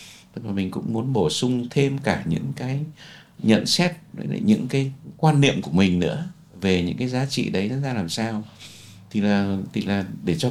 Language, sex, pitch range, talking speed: Vietnamese, male, 95-140 Hz, 200 wpm